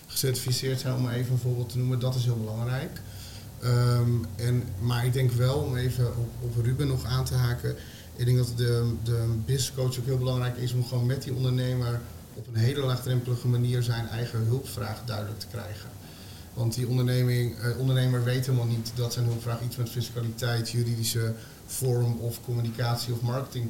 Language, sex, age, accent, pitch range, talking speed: Dutch, male, 30-49, Dutch, 115-125 Hz, 185 wpm